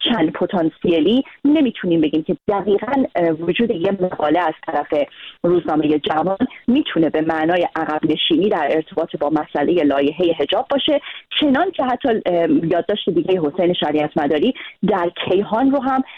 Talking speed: 130 wpm